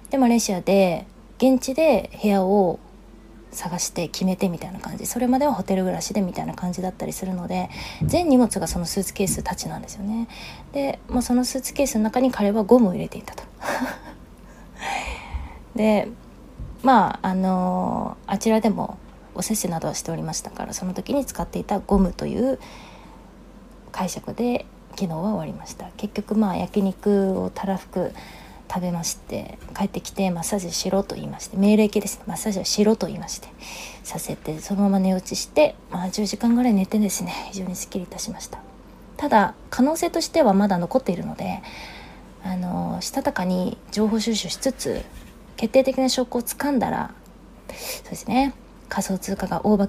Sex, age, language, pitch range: female, 20-39, Japanese, 190-235 Hz